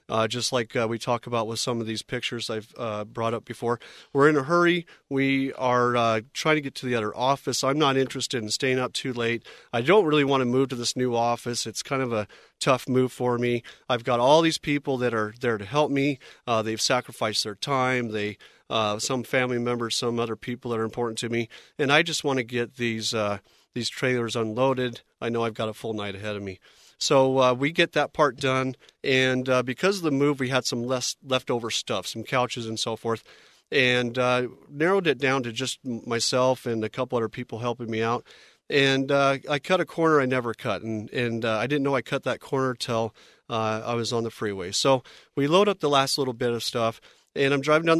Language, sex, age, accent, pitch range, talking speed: English, male, 40-59, American, 115-135 Hz, 235 wpm